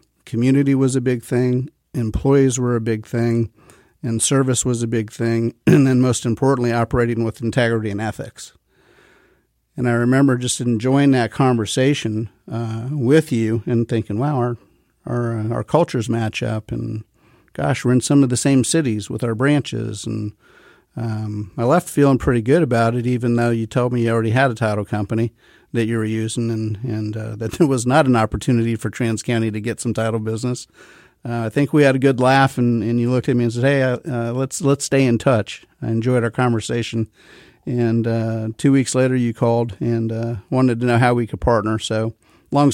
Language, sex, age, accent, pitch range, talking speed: English, male, 50-69, American, 115-130 Hz, 200 wpm